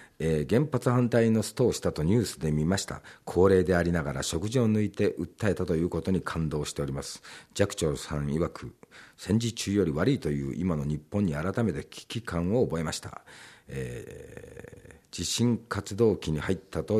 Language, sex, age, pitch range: Japanese, male, 50-69, 75-105 Hz